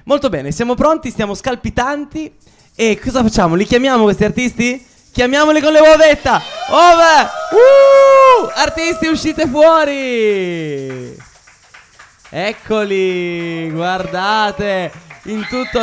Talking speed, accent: 95 wpm, native